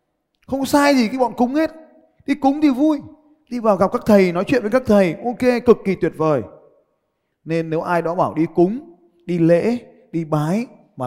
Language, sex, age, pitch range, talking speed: Vietnamese, male, 20-39, 140-215 Hz, 205 wpm